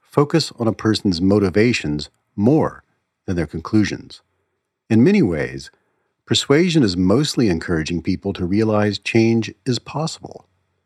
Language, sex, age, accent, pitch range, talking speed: English, male, 50-69, American, 90-120 Hz, 120 wpm